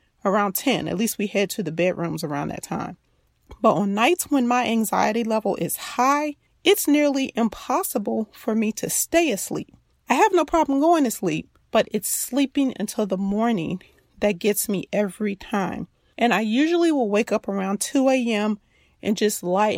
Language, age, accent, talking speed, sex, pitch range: English, 30-49, American, 180 wpm, female, 195-250 Hz